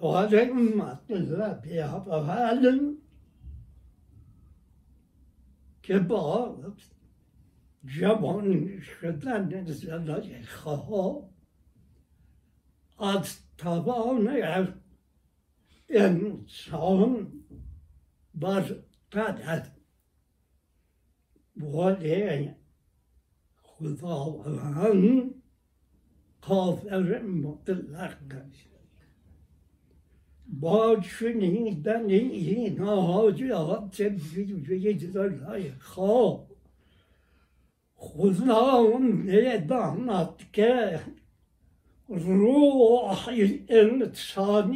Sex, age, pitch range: male, 60-79, 135-215 Hz